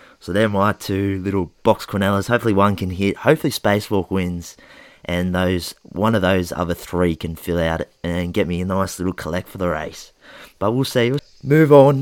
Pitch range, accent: 95-115 Hz, Australian